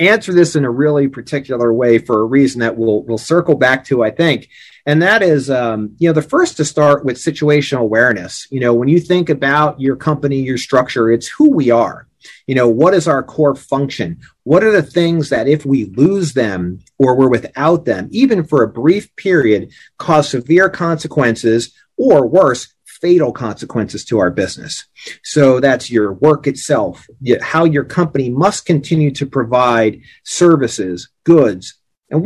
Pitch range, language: 115-155 Hz, English